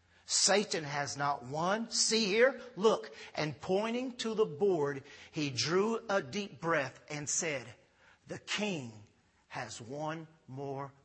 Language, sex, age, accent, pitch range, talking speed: English, male, 50-69, American, 145-220 Hz, 130 wpm